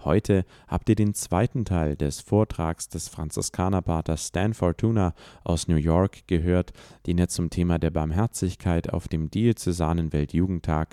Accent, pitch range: German, 80-105 Hz